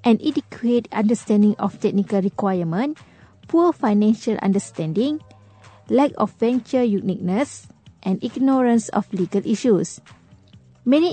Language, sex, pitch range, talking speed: English, female, 195-260 Hz, 100 wpm